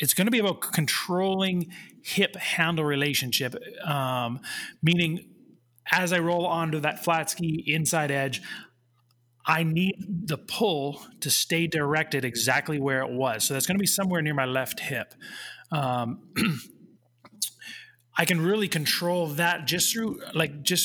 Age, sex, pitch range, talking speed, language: 30-49, male, 140-180 Hz, 145 wpm, English